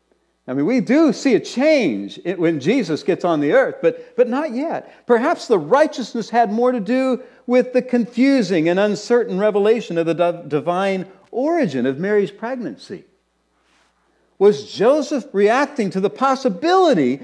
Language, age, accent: English, 50-69, American